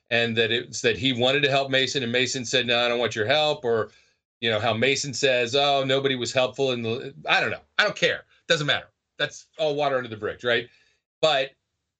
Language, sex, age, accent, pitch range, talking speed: English, male, 30-49, American, 115-155 Hz, 235 wpm